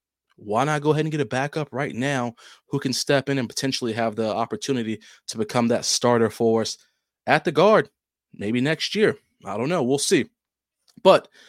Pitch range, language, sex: 120-150 Hz, English, male